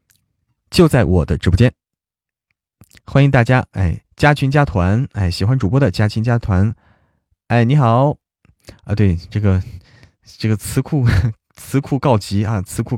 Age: 20-39